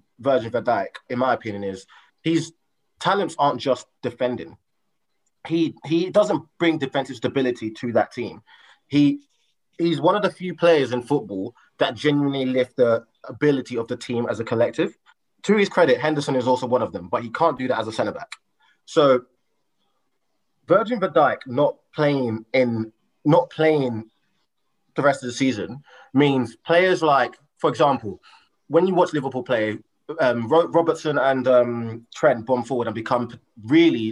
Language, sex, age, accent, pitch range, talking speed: English, male, 20-39, British, 120-150 Hz, 160 wpm